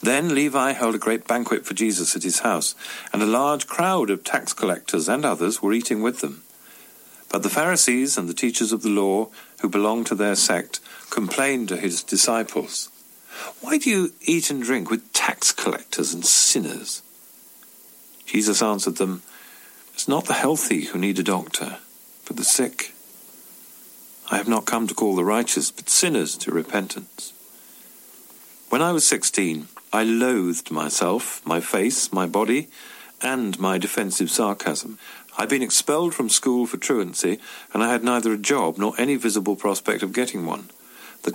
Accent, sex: British, male